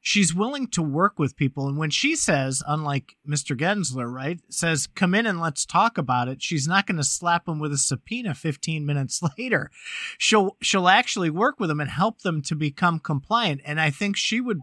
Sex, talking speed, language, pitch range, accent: male, 210 wpm, English, 145-195 Hz, American